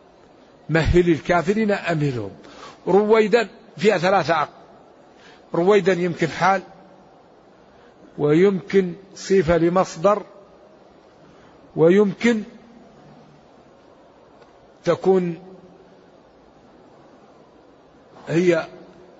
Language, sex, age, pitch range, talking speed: Arabic, male, 50-69, 150-185 Hz, 50 wpm